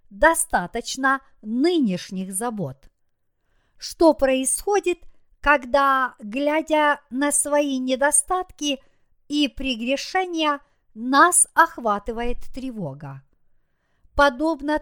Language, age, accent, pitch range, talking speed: Russian, 50-69, native, 230-305 Hz, 65 wpm